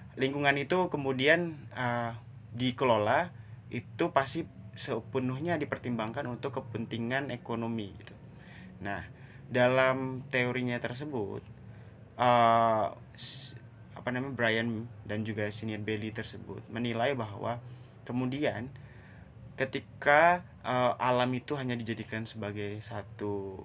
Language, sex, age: Indonesian, male, 20-39